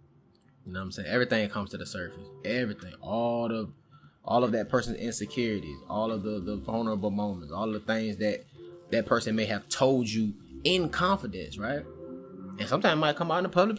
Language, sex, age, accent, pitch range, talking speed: English, male, 20-39, American, 110-145 Hz, 200 wpm